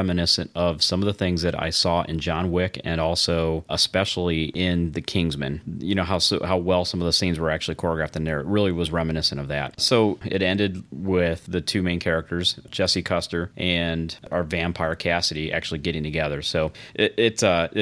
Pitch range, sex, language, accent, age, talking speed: 80-100 Hz, male, English, American, 30-49, 200 wpm